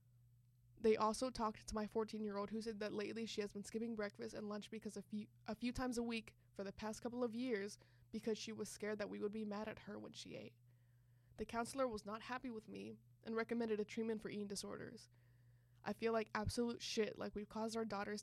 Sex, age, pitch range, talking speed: female, 20-39, 190-225 Hz, 225 wpm